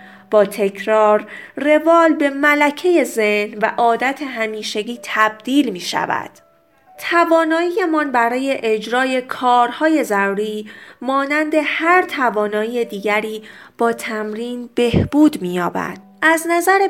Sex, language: female, Persian